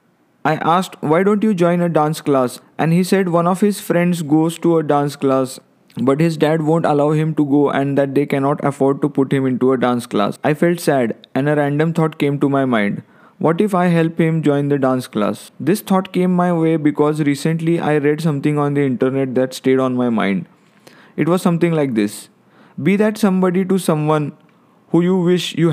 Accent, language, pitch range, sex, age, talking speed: native, Marathi, 140-170 Hz, male, 20-39, 215 wpm